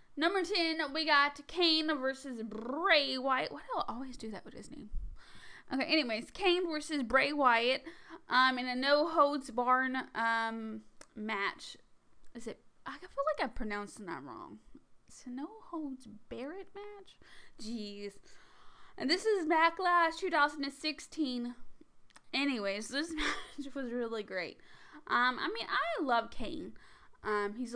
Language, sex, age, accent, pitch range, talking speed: English, female, 10-29, American, 230-305 Hz, 145 wpm